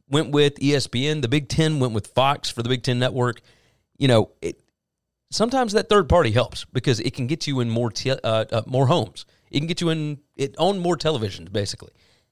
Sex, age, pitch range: male, 30-49, 115-165 Hz